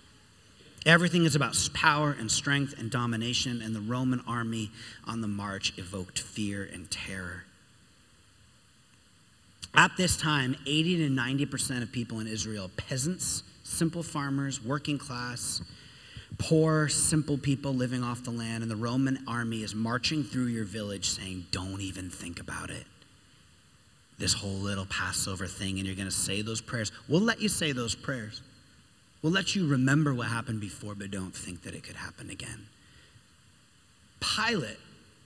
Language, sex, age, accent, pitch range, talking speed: English, male, 40-59, American, 105-145 Hz, 150 wpm